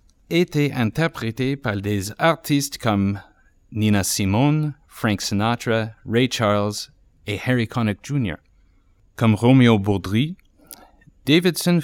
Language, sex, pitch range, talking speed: English, male, 100-140 Hz, 100 wpm